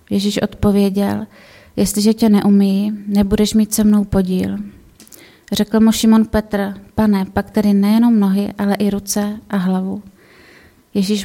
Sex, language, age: female, Czech, 30-49